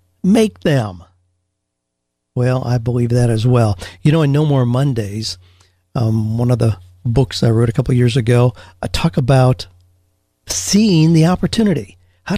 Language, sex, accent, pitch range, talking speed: English, male, American, 110-155 Hz, 160 wpm